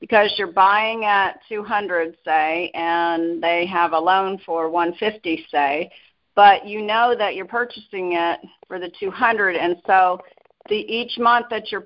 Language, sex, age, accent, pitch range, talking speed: English, female, 50-69, American, 185-215 Hz, 155 wpm